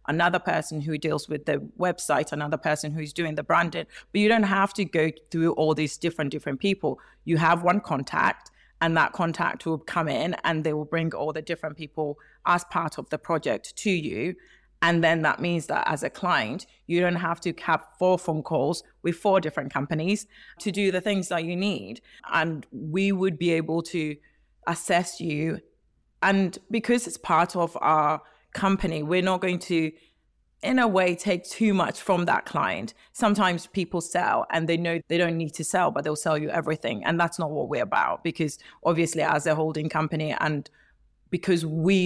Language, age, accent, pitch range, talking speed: English, 30-49, British, 155-175 Hz, 195 wpm